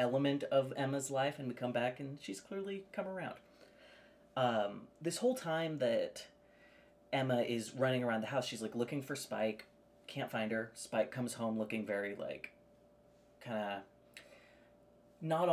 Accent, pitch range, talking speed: American, 110-140 Hz, 155 wpm